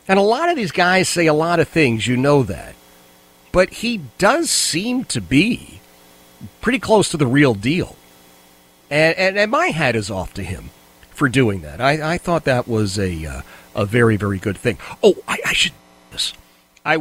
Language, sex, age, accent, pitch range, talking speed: English, male, 40-59, American, 105-165 Hz, 200 wpm